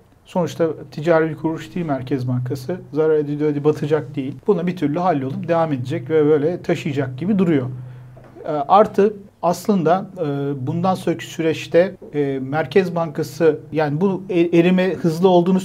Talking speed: 135 wpm